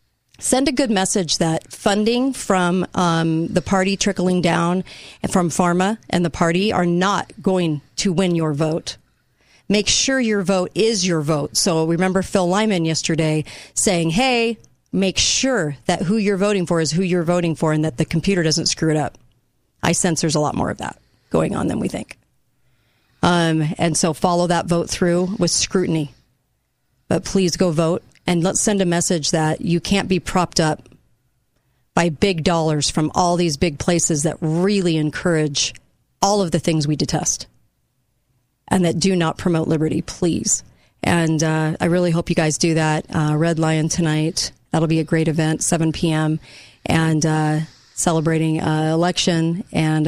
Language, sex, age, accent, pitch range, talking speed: English, female, 40-59, American, 155-185 Hz, 175 wpm